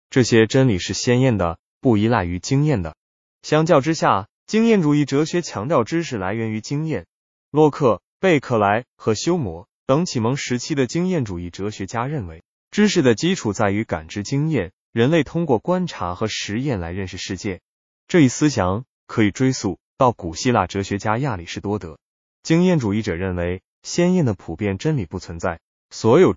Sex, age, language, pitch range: male, 20-39, Chinese, 95-140 Hz